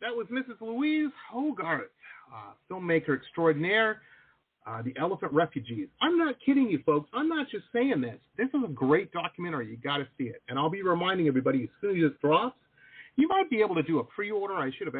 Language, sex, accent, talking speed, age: English, male, American, 210 wpm, 40-59